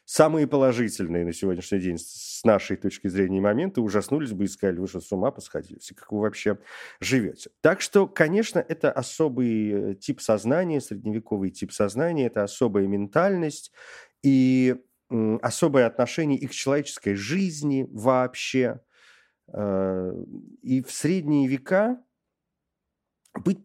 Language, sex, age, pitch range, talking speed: Russian, male, 40-59, 110-160 Hz, 125 wpm